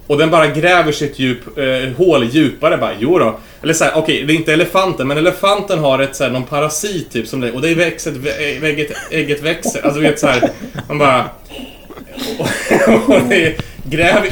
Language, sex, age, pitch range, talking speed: Swedish, male, 30-49, 120-160 Hz, 195 wpm